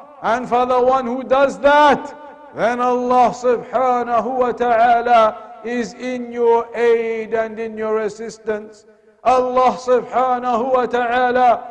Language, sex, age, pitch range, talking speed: English, male, 60-79, 235-270 Hz, 125 wpm